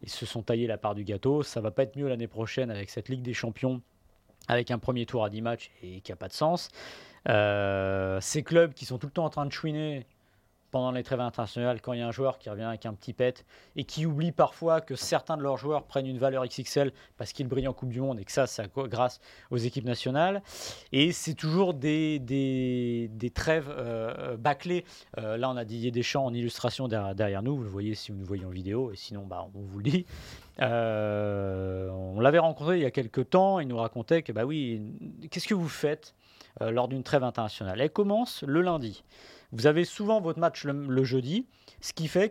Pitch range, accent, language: 110-145 Hz, French, French